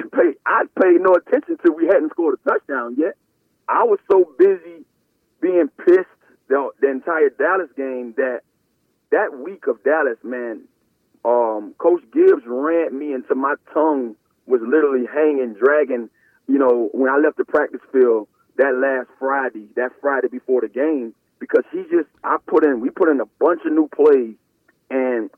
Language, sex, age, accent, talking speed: English, male, 30-49, American, 175 wpm